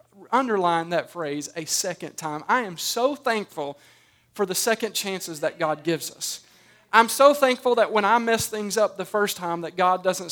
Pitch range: 180-230 Hz